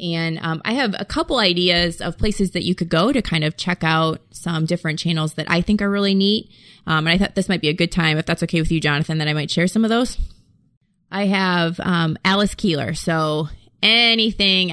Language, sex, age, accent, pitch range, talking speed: English, female, 20-39, American, 165-200 Hz, 230 wpm